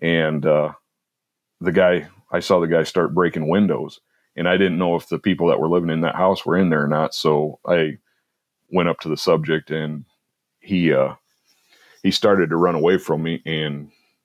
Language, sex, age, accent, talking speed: English, male, 40-59, American, 200 wpm